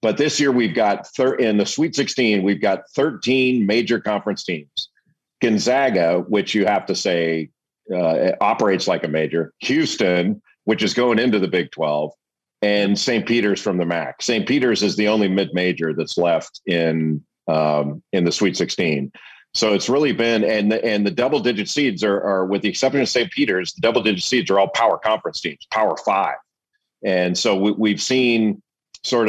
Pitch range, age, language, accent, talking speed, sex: 85-110 Hz, 40-59, English, American, 180 wpm, male